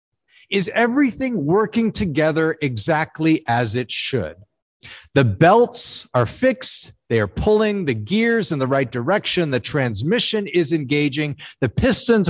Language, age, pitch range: English, 50-69, 130-195 Hz